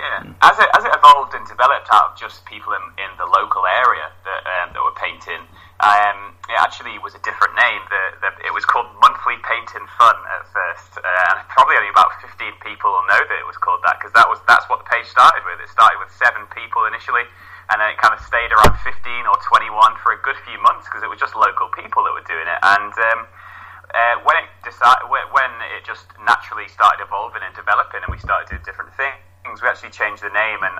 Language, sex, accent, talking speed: English, male, British, 230 wpm